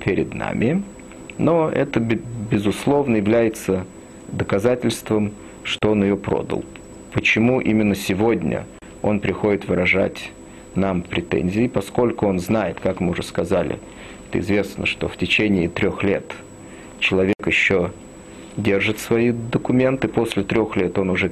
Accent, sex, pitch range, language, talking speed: native, male, 90-110 Hz, Russian, 120 wpm